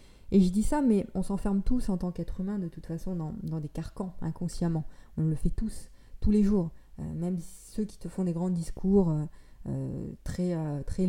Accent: French